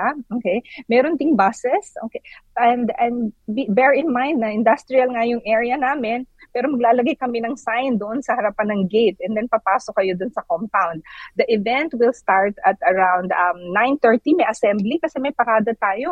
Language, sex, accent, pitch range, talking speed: Filipino, female, native, 210-260 Hz, 180 wpm